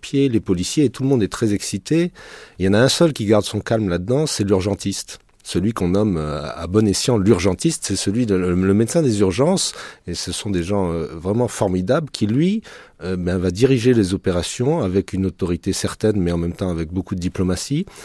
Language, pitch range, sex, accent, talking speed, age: French, 95-125 Hz, male, French, 205 wpm, 40-59